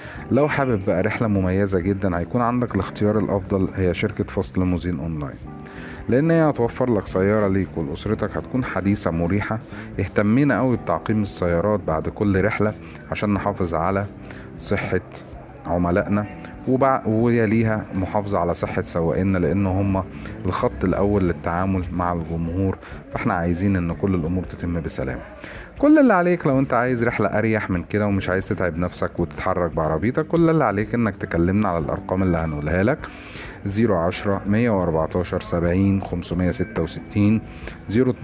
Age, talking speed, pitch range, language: 30-49, 130 wpm, 85-105 Hz, Arabic